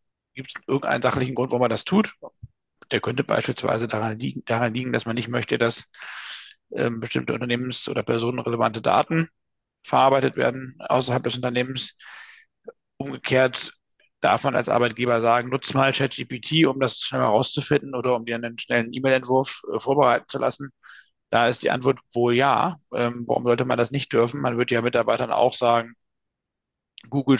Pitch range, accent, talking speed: 120-135 Hz, German, 165 wpm